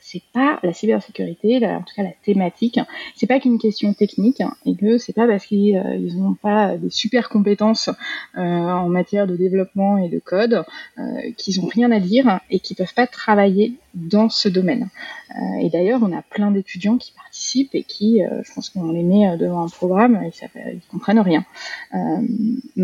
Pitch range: 185-240 Hz